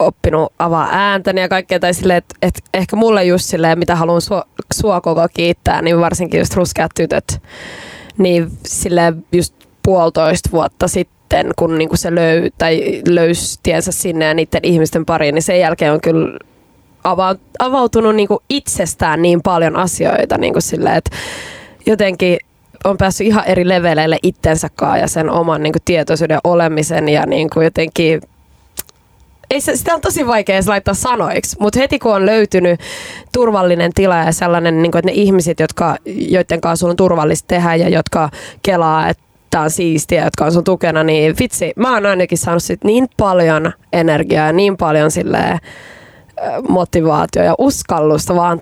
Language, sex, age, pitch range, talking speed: Finnish, female, 20-39, 165-190 Hz, 150 wpm